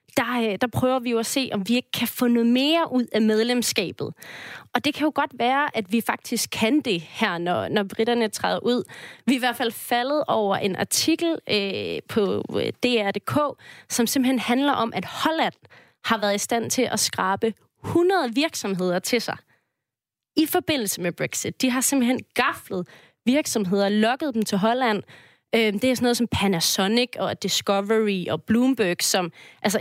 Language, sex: Danish, female